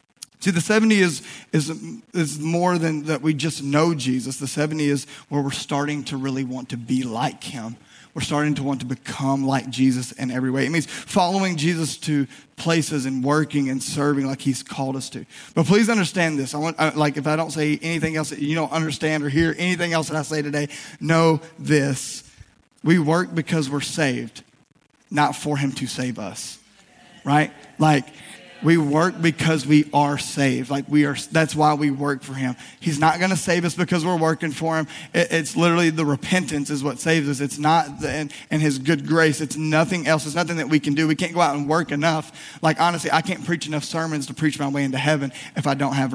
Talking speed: 220 wpm